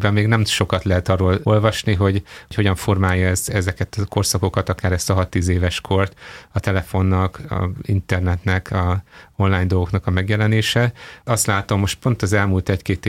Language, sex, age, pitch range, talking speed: Hungarian, male, 30-49, 95-105 Hz, 165 wpm